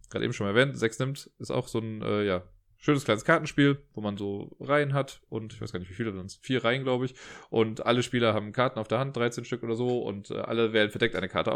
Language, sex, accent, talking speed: German, male, German, 275 wpm